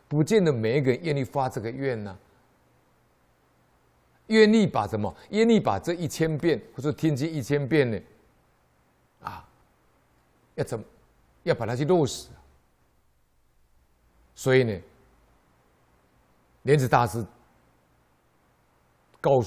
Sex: male